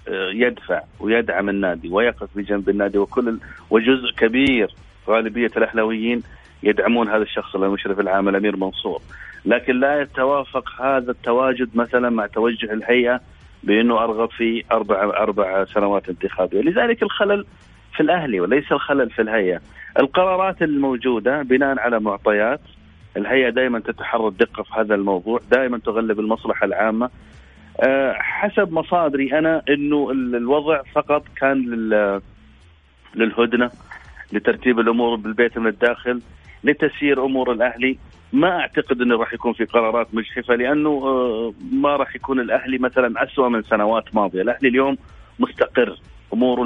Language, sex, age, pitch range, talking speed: Arabic, male, 30-49, 105-130 Hz, 125 wpm